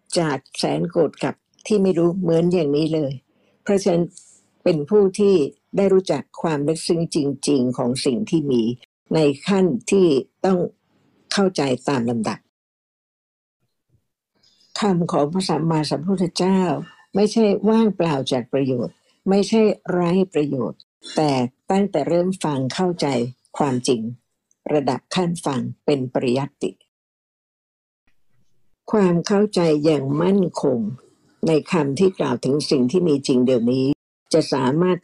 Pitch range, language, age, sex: 140-185 Hz, Thai, 60-79, female